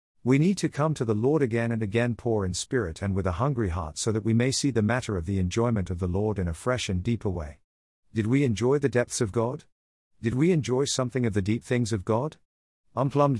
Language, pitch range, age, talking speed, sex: English, 95-125 Hz, 50-69, 245 wpm, male